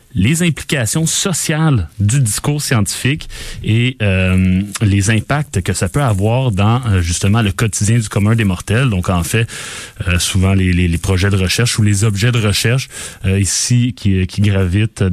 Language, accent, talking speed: French, Canadian, 170 wpm